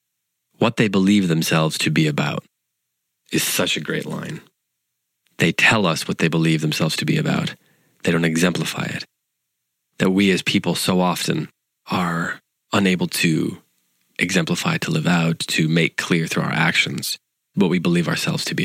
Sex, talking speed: male, 165 wpm